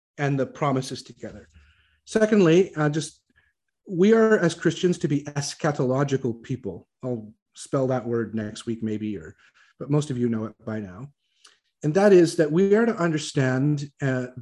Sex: male